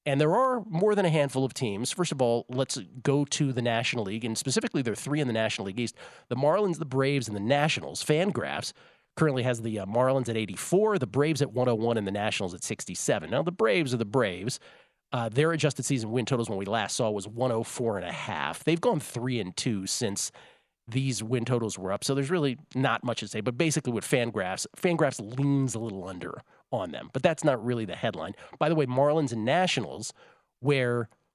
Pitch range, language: 115-145 Hz, English